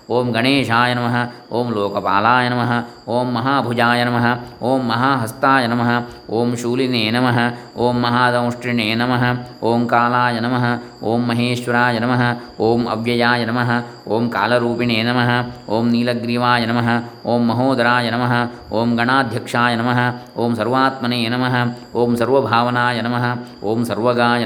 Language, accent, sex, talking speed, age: Kannada, native, male, 120 wpm, 20-39